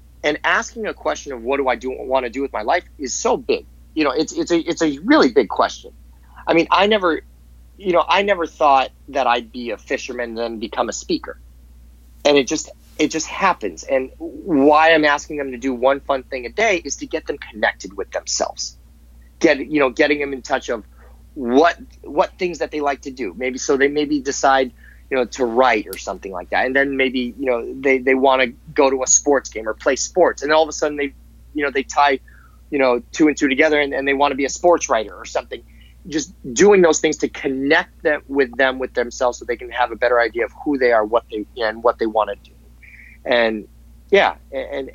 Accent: American